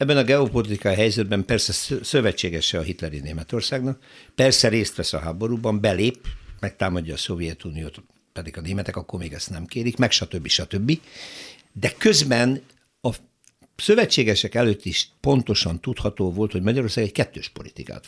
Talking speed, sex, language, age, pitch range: 145 wpm, male, Hungarian, 60-79, 95-120 Hz